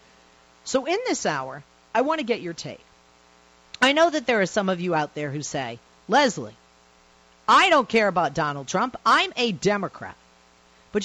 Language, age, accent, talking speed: English, 40-59, American, 180 wpm